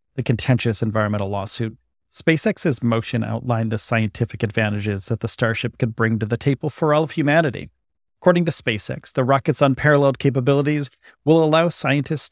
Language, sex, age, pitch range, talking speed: English, male, 40-59, 120-155 Hz, 155 wpm